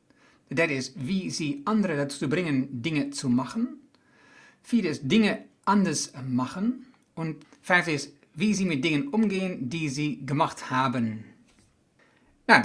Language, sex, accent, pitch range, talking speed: Dutch, male, Dutch, 140-185 Hz, 150 wpm